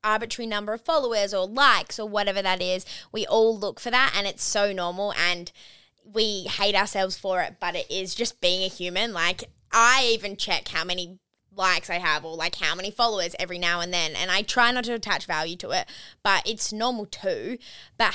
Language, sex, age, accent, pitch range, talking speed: English, female, 10-29, Australian, 185-225 Hz, 210 wpm